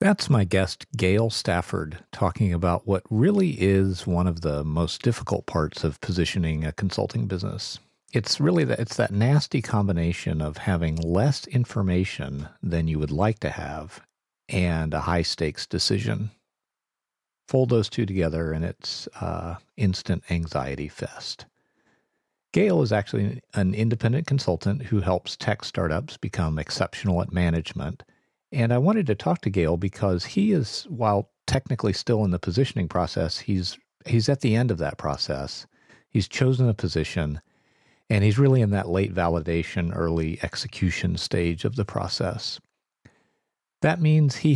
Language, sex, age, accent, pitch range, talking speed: English, male, 50-69, American, 85-115 Hz, 150 wpm